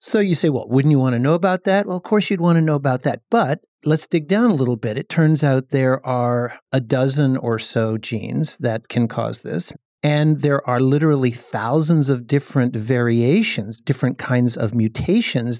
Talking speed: 205 wpm